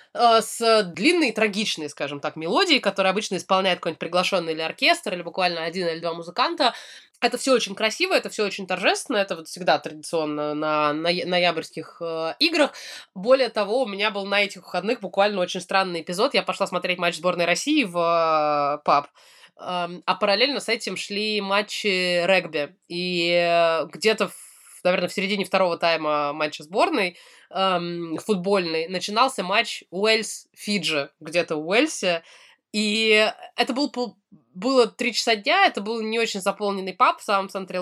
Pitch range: 175-225 Hz